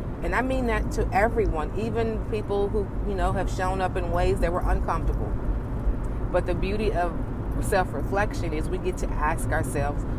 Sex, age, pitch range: female, 40-59, 110-140 Hz